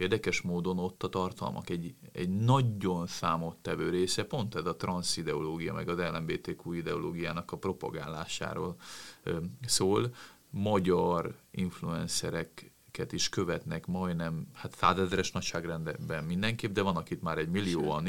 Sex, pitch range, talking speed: male, 90-120 Hz, 120 wpm